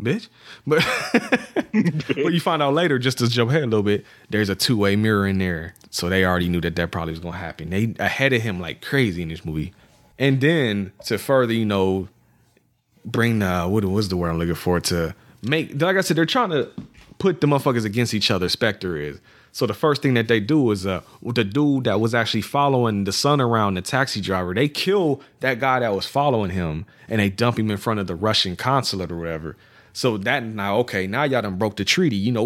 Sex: male